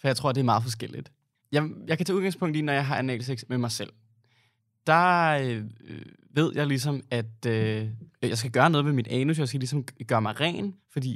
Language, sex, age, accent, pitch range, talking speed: Danish, male, 20-39, native, 115-150 Hz, 220 wpm